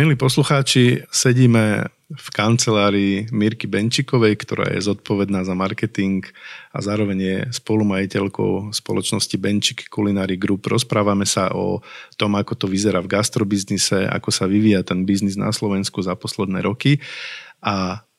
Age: 40-59